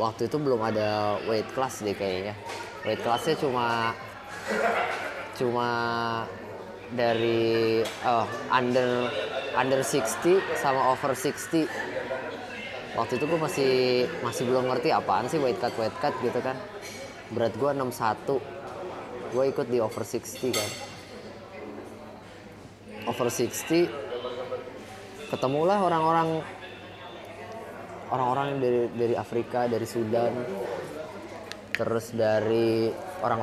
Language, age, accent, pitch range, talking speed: Indonesian, 20-39, native, 110-125 Hz, 100 wpm